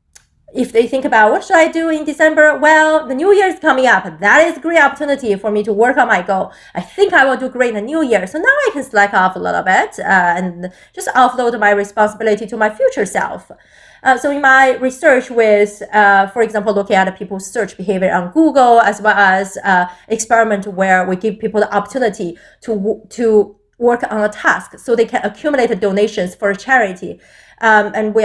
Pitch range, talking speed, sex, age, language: 200-265 Hz, 215 wpm, female, 30-49, English